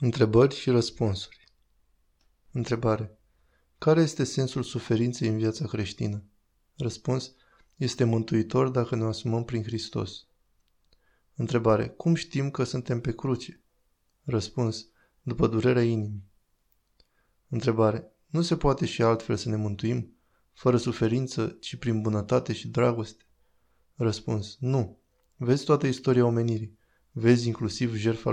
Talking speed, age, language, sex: 115 wpm, 20-39, Romanian, male